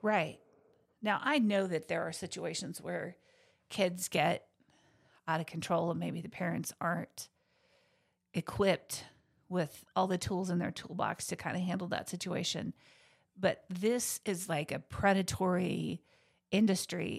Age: 50-69